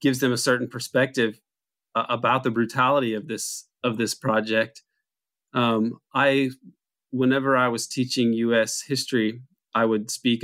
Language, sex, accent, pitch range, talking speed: English, male, American, 105-125 Hz, 145 wpm